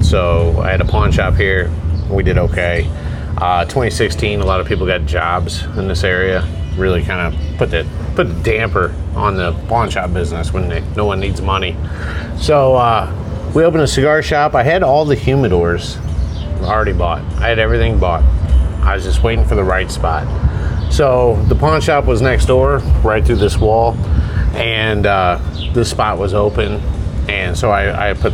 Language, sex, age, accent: English, male, 30-49, American